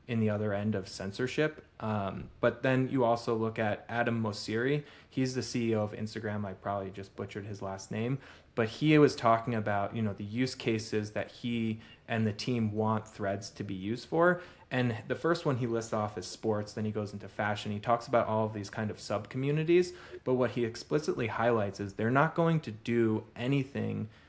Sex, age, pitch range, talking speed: male, 20-39, 105-120 Hz, 210 wpm